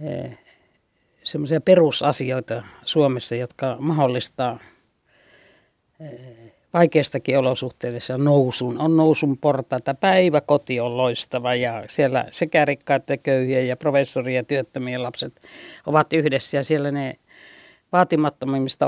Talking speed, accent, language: 105 wpm, native, Finnish